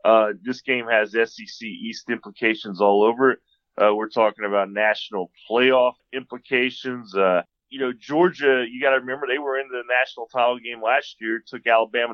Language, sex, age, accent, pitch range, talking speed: English, male, 30-49, American, 110-140 Hz, 175 wpm